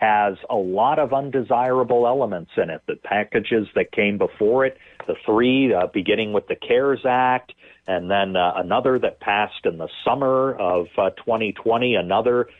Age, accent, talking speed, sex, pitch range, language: 40-59, American, 165 wpm, male, 100-125 Hz, English